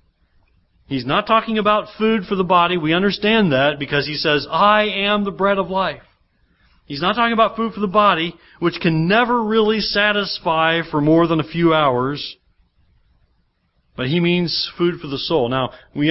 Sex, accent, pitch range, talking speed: male, American, 120-190 Hz, 180 wpm